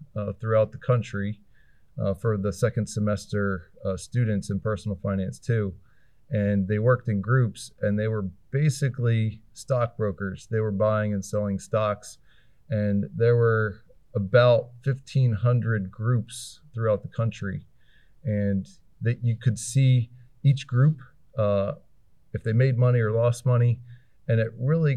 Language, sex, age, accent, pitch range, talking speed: English, male, 40-59, American, 105-120 Hz, 140 wpm